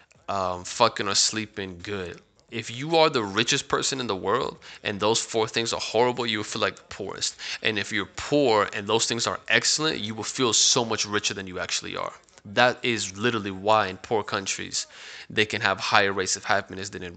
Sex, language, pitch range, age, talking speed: male, English, 100-115 Hz, 20-39, 215 wpm